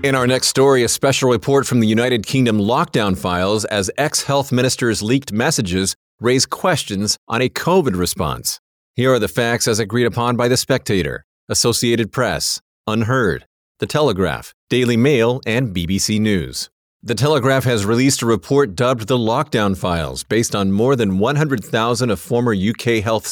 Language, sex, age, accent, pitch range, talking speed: English, male, 40-59, American, 105-130 Hz, 160 wpm